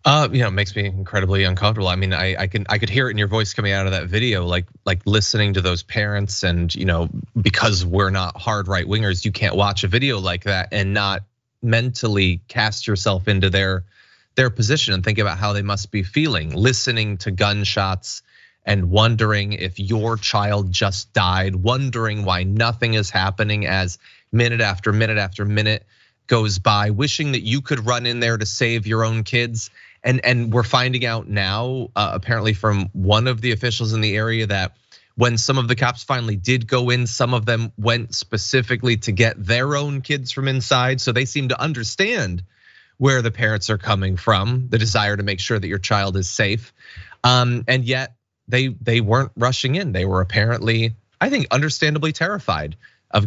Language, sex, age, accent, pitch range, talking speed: English, male, 20-39, American, 100-120 Hz, 195 wpm